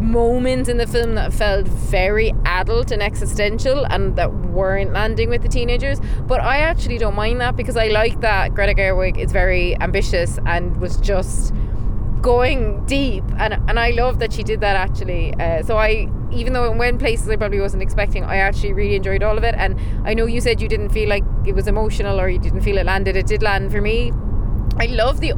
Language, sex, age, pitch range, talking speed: English, female, 20-39, 105-125 Hz, 215 wpm